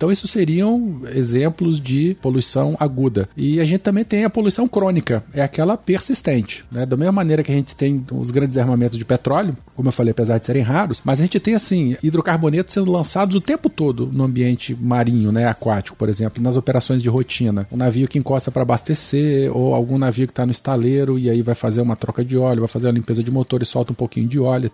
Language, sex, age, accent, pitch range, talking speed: Portuguese, male, 40-59, Brazilian, 120-155 Hz, 225 wpm